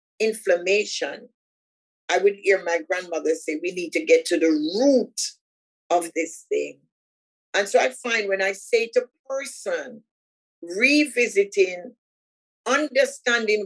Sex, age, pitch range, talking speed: female, 50-69, 175-275 Hz, 125 wpm